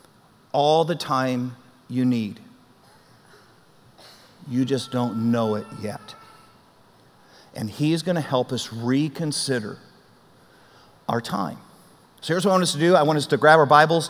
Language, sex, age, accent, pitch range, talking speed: English, male, 50-69, American, 140-170 Hz, 150 wpm